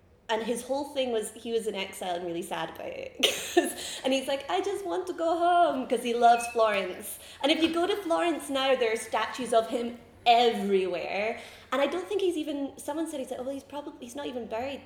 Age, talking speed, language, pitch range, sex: 20-39, 235 wpm, English, 185-265 Hz, female